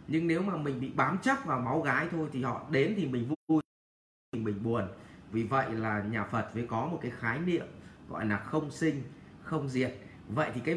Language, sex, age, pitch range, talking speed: English, male, 20-39, 110-155 Hz, 225 wpm